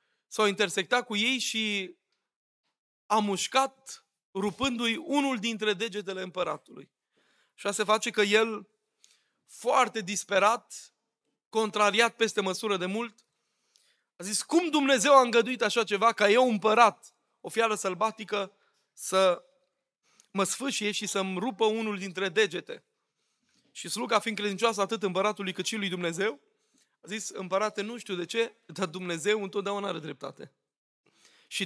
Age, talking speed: 20-39, 135 wpm